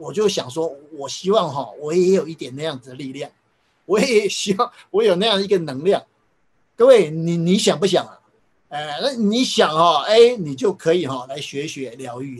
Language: Chinese